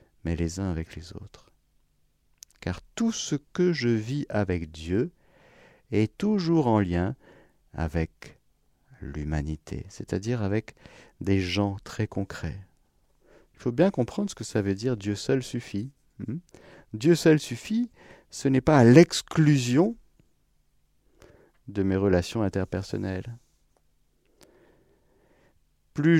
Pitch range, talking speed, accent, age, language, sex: 90-130 Hz, 115 wpm, French, 50-69, French, male